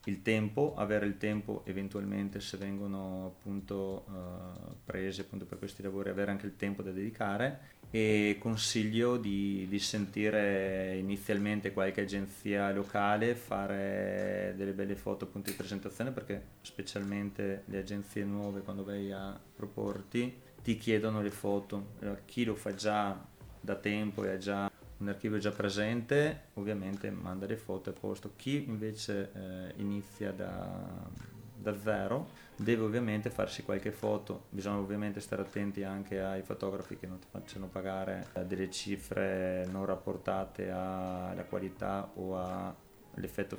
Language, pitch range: Italian, 95-105 Hz